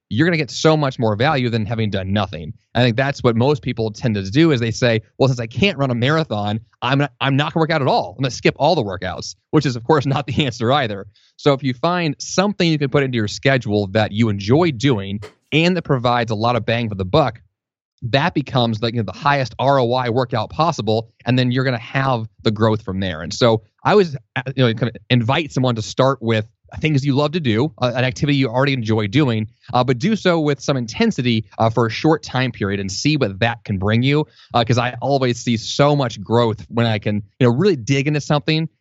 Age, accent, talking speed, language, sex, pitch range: 30-49, American, 250 wpm, English, male, 115-145 Hz